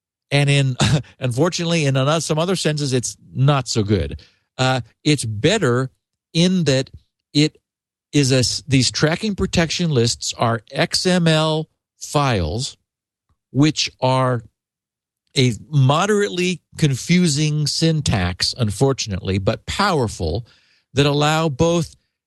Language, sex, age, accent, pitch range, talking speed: English, male, 50-69, American, 120-165 Hz, 100 wpm